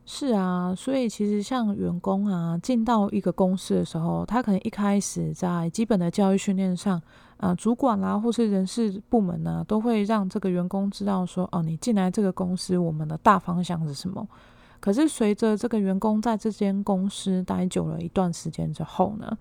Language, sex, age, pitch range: Chinese, female, 20-39, 170-215 Hz